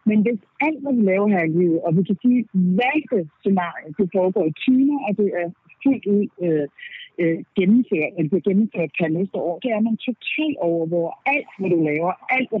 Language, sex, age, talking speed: Danish, female, 60-79, 220 wpm